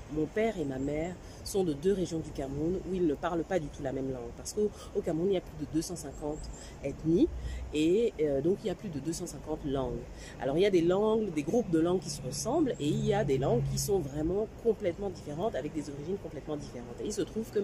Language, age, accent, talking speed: French, 40-59, French, 255 wpm